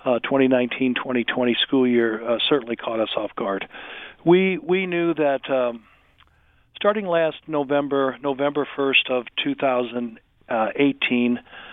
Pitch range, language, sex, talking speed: 125-145 Hz, English, male, 115 wpm